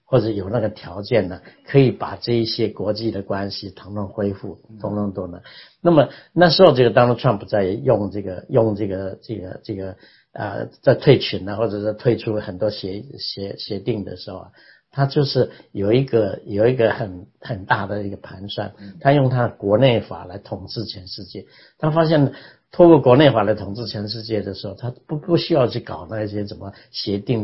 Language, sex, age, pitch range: Chinese, male, 60-79, 100-125 Hz